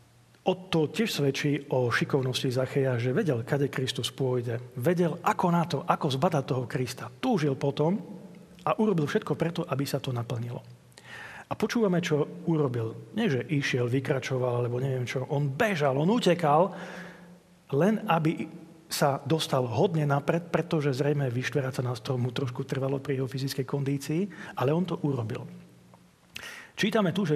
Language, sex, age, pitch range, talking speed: Slovak, male, 40-59, 130-155 Hz, 155 wpm